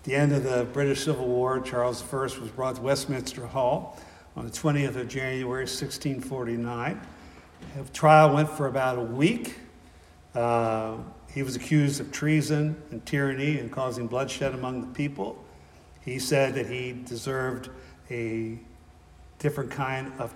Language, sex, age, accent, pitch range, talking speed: English, male, 60-79, American, 120-140 Hz, 150 wpm